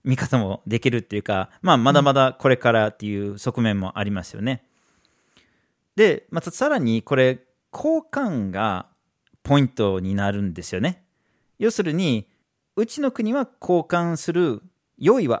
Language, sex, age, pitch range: Japanese, male, 40-59, 120-190 Hz